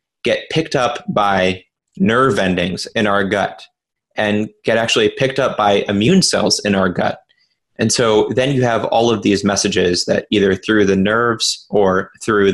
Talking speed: 170 wpm